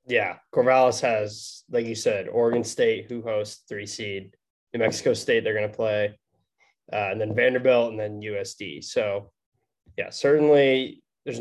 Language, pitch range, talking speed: English, 110-145 Hz, 160 wpm